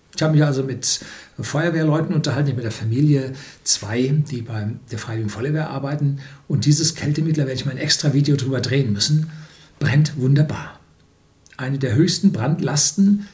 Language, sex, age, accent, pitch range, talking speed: German, male, 60-79, German, 135-170 Hz, 165 wpm